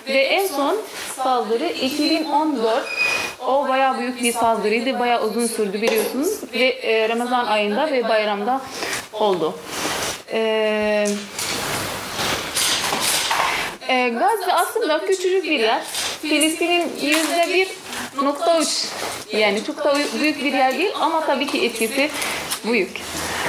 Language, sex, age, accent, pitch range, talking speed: Turkish, female, 30-49, native, 235-330 Hz, 105 wpm